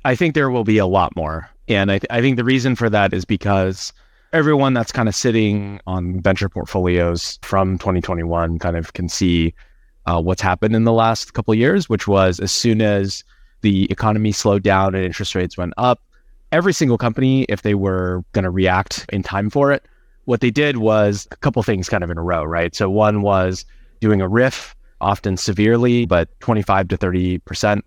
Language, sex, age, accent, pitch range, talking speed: English, male, 20-39, American, 95-115 Hz, 205 wpm